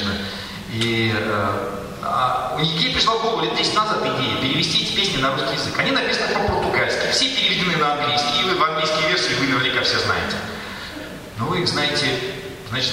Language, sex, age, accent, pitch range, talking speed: Russian, male, 40-59, native, 100-150 Hz, 180 wpm